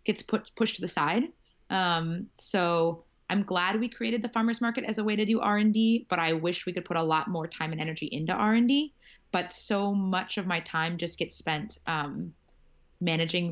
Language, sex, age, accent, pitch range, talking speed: English, female, 20-39, American, 160-200 Hz, 205 wpm